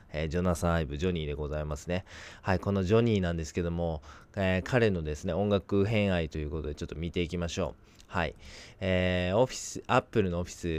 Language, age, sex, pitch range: Japanese, 20-39, male, 85-105 Hz